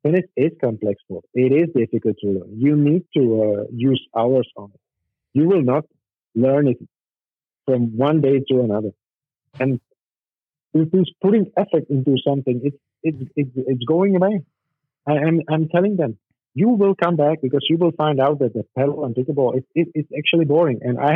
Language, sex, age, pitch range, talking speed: English, male, 50-69, 125-160 Hz, 195 wpm